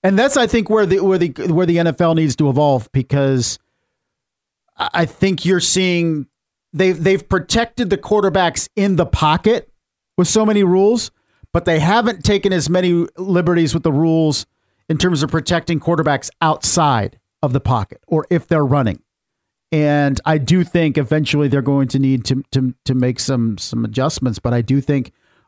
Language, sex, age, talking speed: English, male, 50-69, 175 wpm